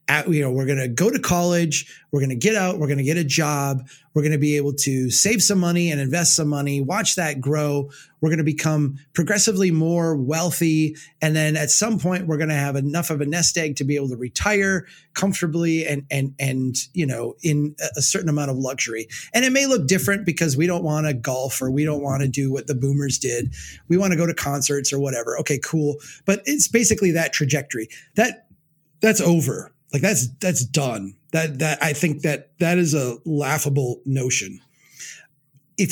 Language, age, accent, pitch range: English, 30-49, American, 140-170 Hz